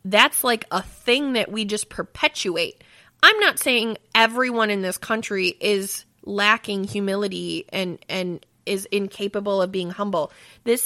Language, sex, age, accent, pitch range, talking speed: English, female, 20-39, American, 195-260 Hz, 145 wpm